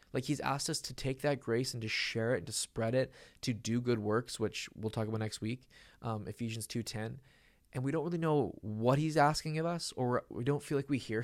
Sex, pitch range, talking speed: male, 115-155 Hz, 240 wpm